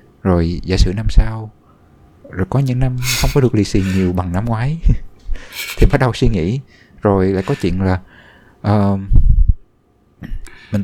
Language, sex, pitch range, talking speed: Vietnamese, male, 95-130 Hz, 165 wpm